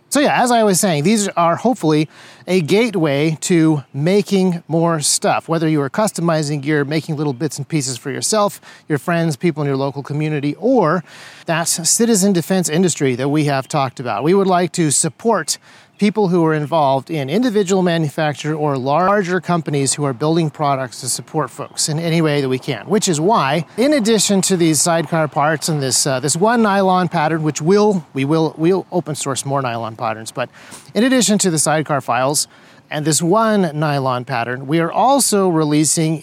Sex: male